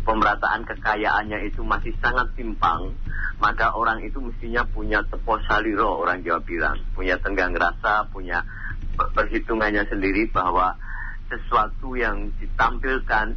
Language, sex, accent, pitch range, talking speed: Indonesian, male, native, 105-130 Hz, 115 wpm